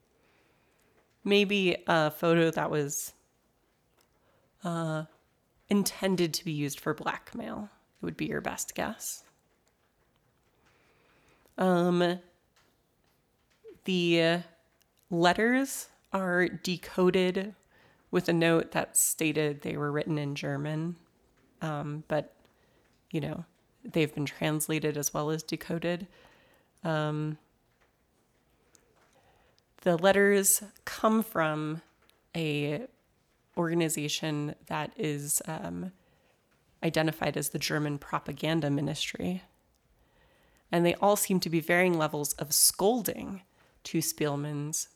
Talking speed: 95 wpm